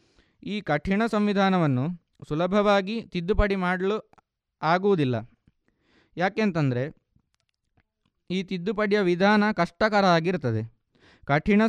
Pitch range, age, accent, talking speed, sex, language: 160-205 Hz, 20-39, native, 70 wpm, male, Kannada